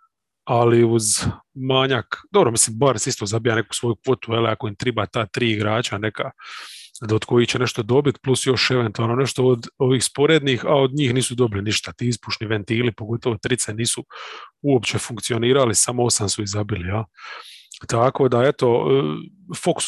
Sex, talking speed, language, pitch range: male, 165 wpm, English, 110-130 Hz